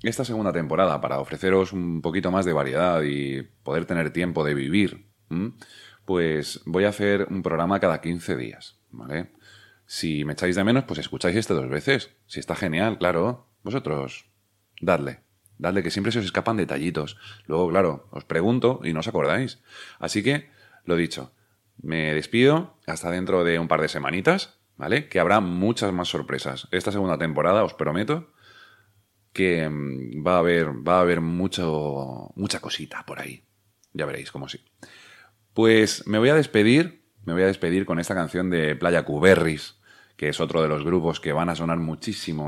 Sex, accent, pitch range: male, Spanish, 80-100 Hz